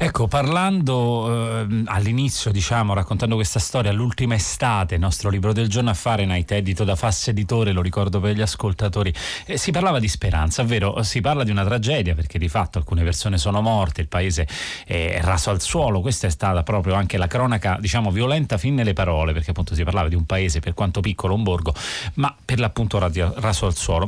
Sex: male